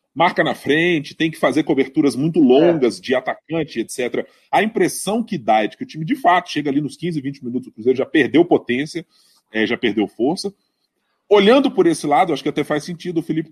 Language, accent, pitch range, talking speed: Portuguese, Brazilian, 135-205 Hz, 215 wpm